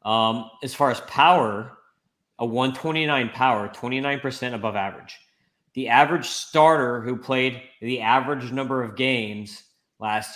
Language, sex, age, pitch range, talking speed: English, male, 20-39, 110-130 Hz, 125 wpm